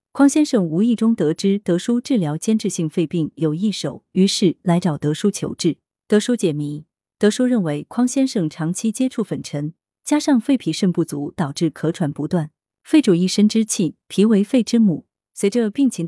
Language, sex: Chinese, female